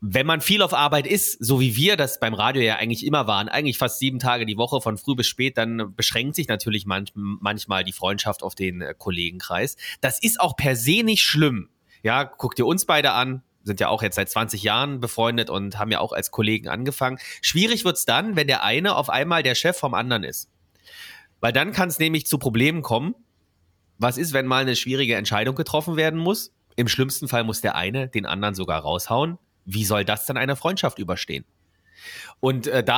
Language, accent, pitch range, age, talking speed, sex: German, German, 105-150 Hz, 30-49, 215 wpm, male